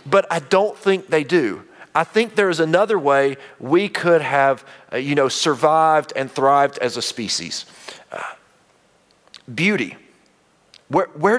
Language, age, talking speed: English, 40-59, 150 wpm